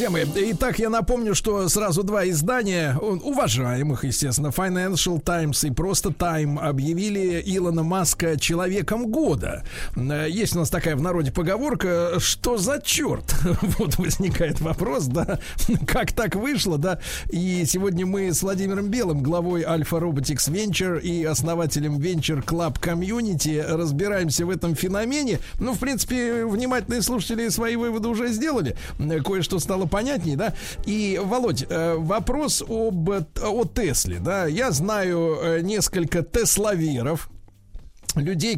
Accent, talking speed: native, 125 wpm